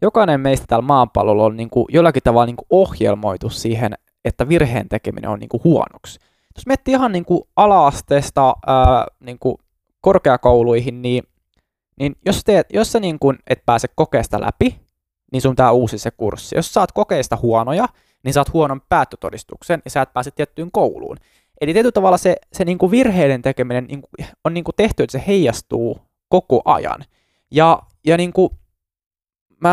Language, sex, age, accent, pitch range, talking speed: Finnish, male, 20-39, native, 115-155 Hz, 175 wpm